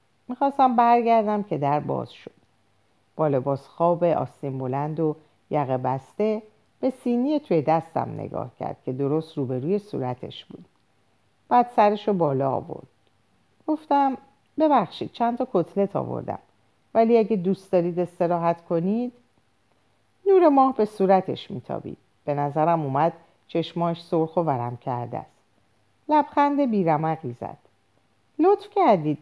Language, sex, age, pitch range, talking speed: Persian, female, 50-69, 145-220 Hz, 120 wpm